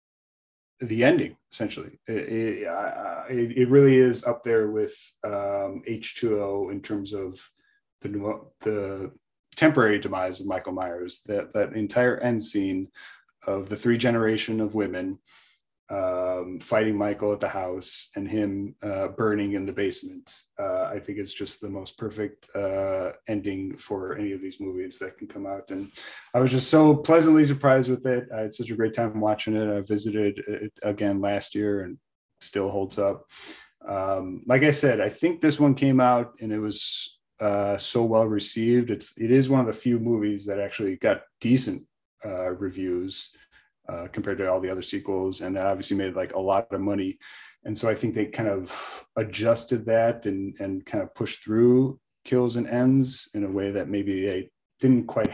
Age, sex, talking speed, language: 30-49, male, 180 wpm, English